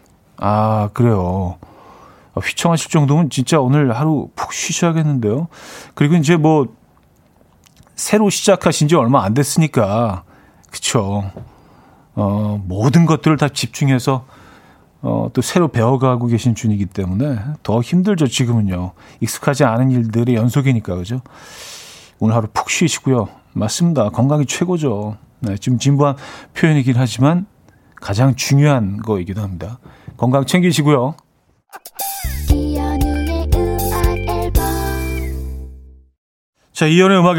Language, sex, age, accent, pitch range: Korean, male, 40-59, native, 105-150 Hz